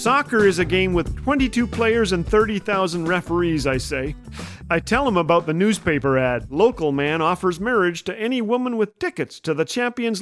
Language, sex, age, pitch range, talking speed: English, male, 40-59, 145-195 Hz, 180 wpm